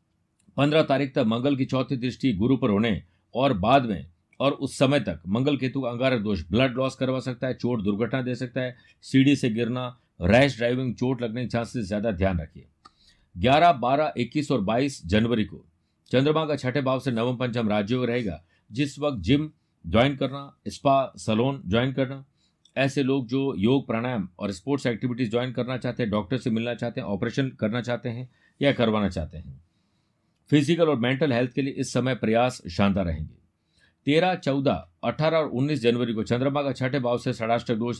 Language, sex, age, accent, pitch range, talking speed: Hindi, male, 50-69, native, 100-135 Hz, 190 wpm